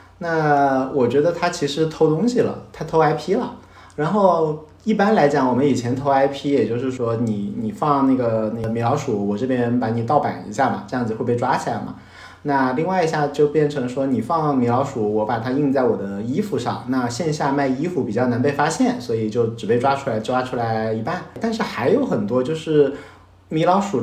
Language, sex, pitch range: Chinese, male, 115-160 Hz